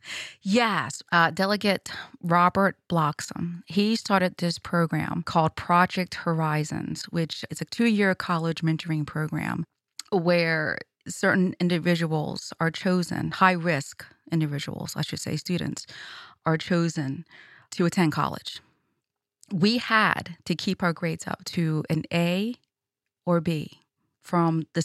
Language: English